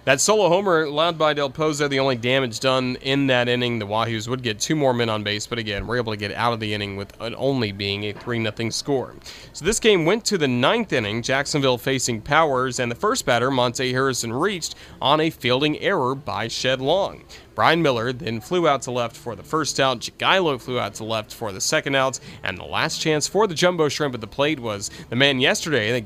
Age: 30-49